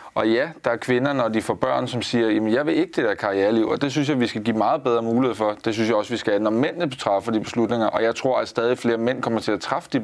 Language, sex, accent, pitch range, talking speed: Danish, male, native, 105-125 Hz, 310 wpm